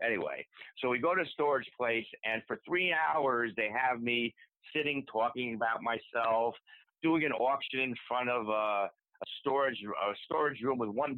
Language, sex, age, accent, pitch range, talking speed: English, male, 60-79, American, 115-165 Hz, 170 wpm